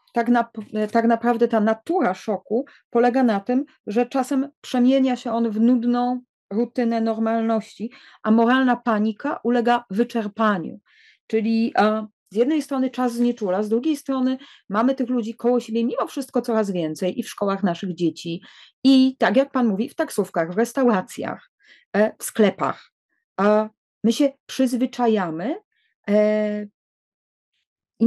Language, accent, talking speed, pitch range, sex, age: English, Polish, 135 wpm, 200-250 Hz, female, 30-49